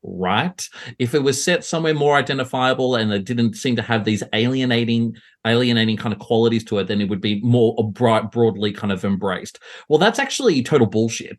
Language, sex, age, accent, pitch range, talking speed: English, male, 30-49, Australian, 115-170 Hz, 195 wpm